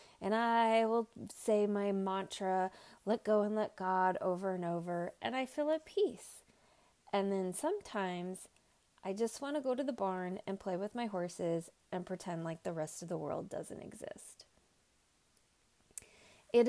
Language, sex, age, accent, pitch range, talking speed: English, female, 30-49, American, 175-225 Hz, 165 wpm